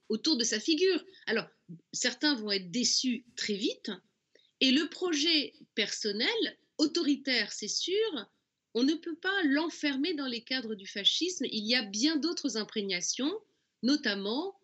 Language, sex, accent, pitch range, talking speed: French, female, French, 195-285 Hz, 145 wpm